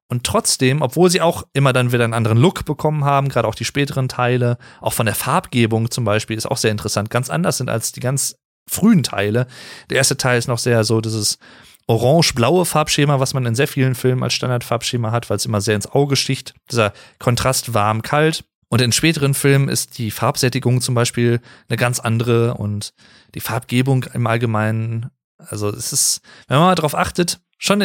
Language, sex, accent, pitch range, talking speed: German, male, German, 120-145 Hz, 195 wpm